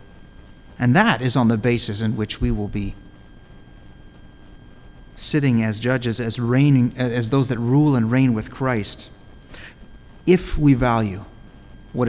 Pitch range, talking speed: 105-135 Hz, 140 wpm